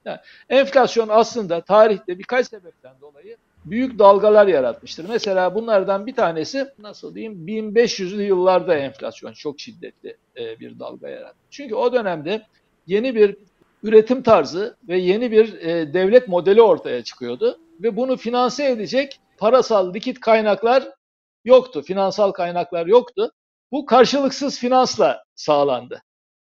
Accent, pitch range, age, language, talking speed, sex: native, 195-255 Hz, 60-79, Turkish, 120 wpm, male